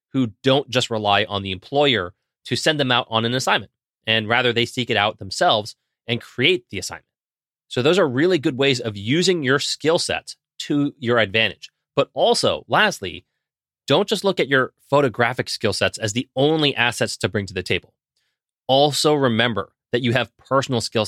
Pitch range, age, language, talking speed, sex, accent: 105-135 Hz, 30-49, English, 190 wpm, male, American